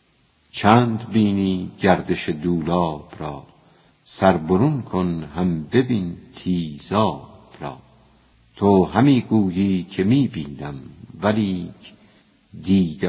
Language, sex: Persian, female